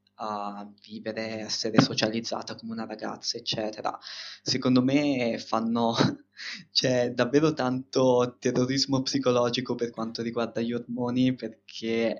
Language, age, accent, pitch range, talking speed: Italian, 20-39, native, 110-120 Hz, 105 wpm